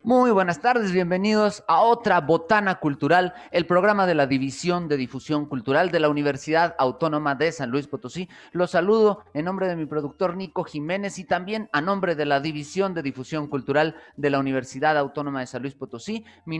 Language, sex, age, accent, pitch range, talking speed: Spanish, male, 30-49, Mexican, 145-185 Hz, 190 wpm